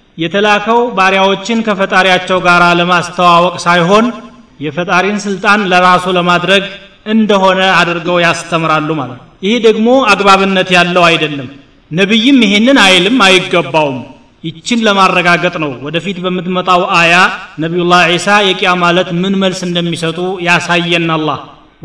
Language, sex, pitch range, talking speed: Amharic, male, 170-200 Hz, 100 wpm